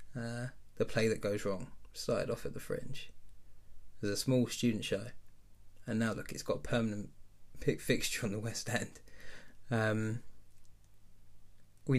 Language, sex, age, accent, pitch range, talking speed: English, male, 20-39, British, 100-120 Hz, 155 wpm